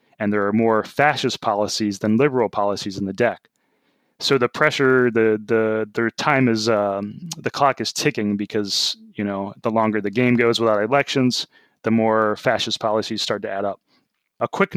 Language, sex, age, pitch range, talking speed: English, male, 20-39, 110-130 Hz, 185 wpm